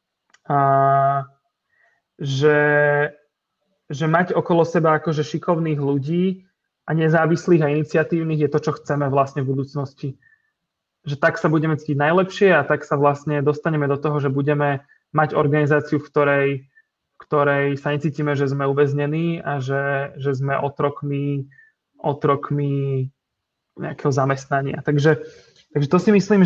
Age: 20-39